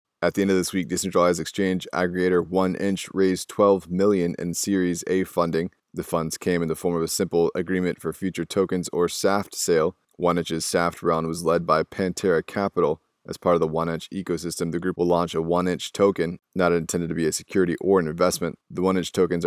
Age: 20-39